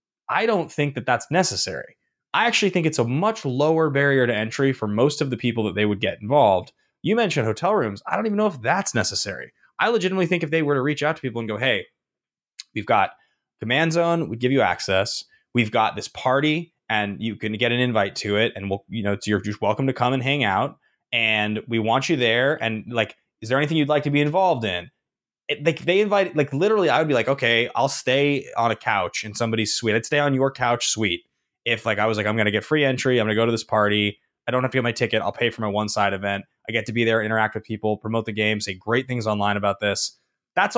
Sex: male